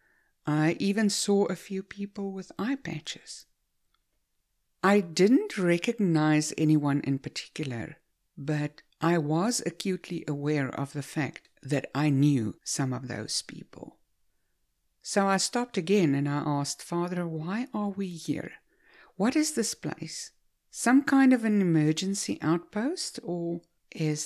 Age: 60-79